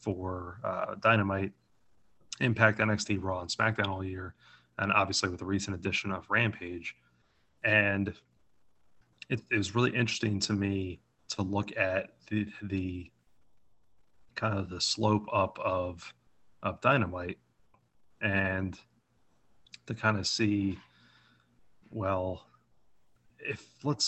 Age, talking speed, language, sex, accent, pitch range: 30-49, 115 wpm, English, male, American, 90-110 Hz